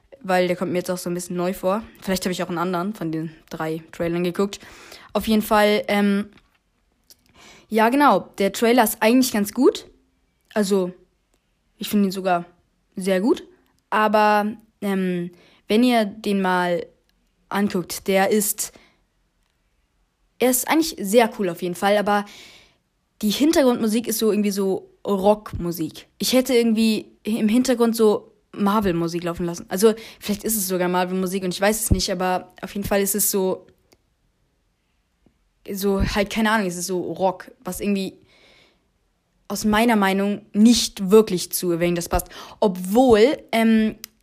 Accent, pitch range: German, 175-215 Hz